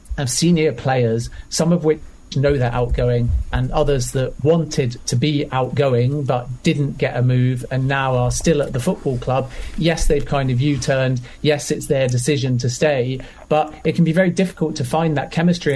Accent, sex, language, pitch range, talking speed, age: British, male, English, 135-150 Hz, 190 wpm, 40-59